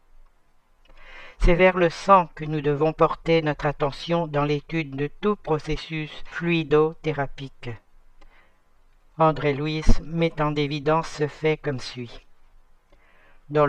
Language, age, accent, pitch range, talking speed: French, 60-79, French, 140-160 Hz, 115 wpm